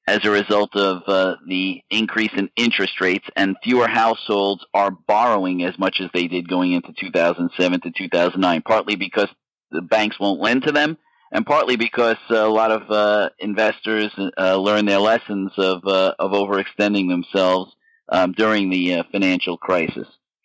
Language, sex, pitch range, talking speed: English, male, 100-115 Hz, 165 wpm